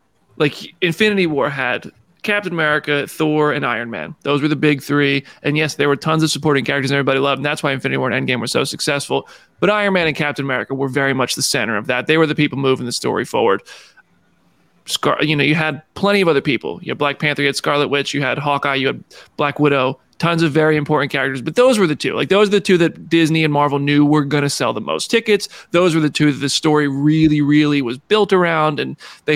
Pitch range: 140-165 Hz